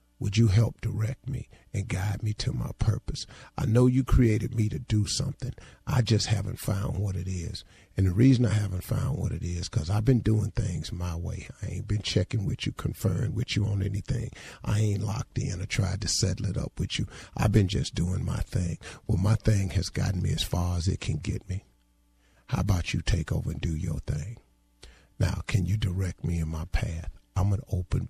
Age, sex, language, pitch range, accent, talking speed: 50-69, male, English, 95-140 Hz, American, 220 wpm